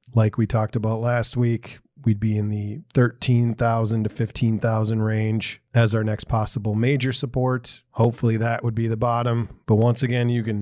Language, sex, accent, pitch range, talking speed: English, male, American, 110-120 Hz, 175 wpm